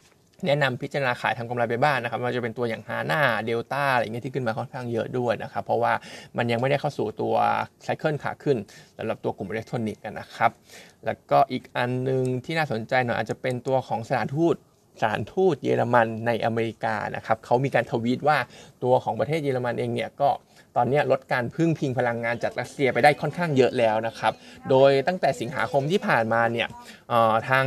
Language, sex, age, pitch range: Thai, male, 20-39, 115-145 Hz